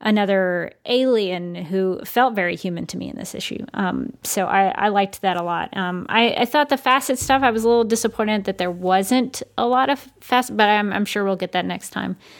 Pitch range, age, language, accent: 190-230 Hz, 30-49, English, American